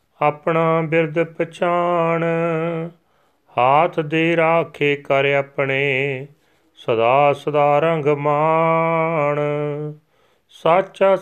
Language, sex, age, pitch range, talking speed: Punjabi, male, 30-49, 145-170 Hz, 70 wpm